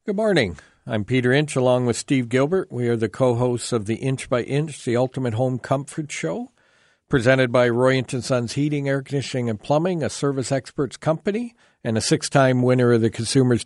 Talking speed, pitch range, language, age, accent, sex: 200 wpm, 110-130 Hz, English, 50-69, American, male